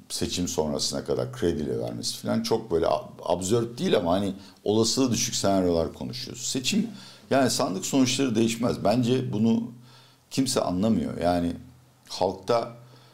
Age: 60-79